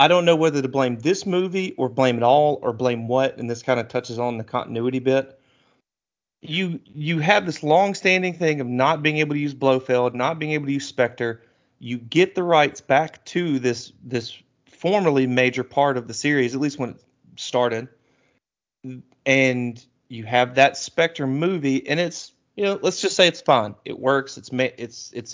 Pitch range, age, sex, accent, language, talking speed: 125-195 Hz, 30-49, male, American, English, 195 wpm